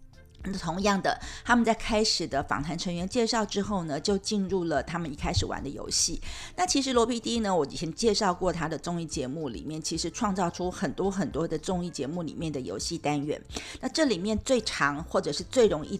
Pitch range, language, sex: 165-215 Hz, Chinese, female